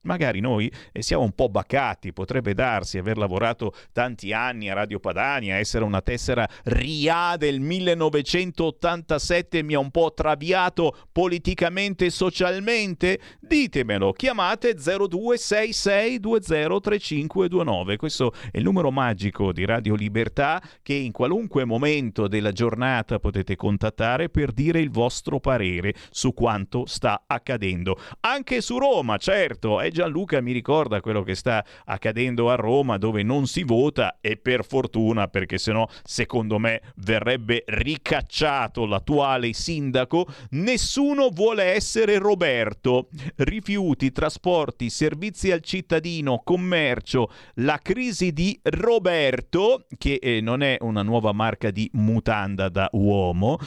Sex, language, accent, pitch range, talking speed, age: male, Italian, native, 110-175 Hz, 125 wpm, 40-59